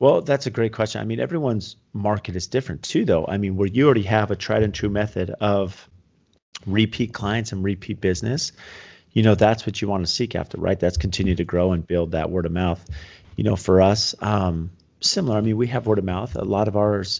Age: 30-49